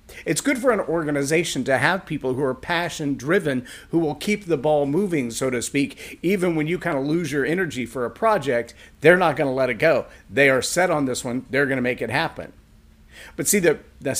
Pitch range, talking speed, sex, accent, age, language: 135-180 Hz, 230 wpm, male, American, 50-69, English